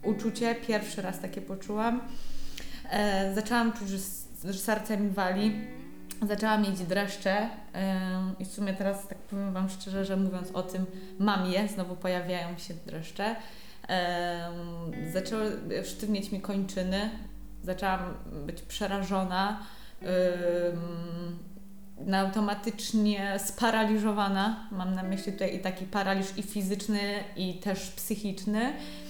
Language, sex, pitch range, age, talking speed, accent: Polish, female, 180-215 Hz, 20-39, 120 wpm, native